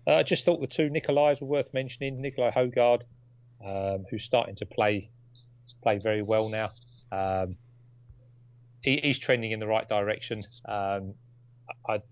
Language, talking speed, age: English, 155 wpm, 30-49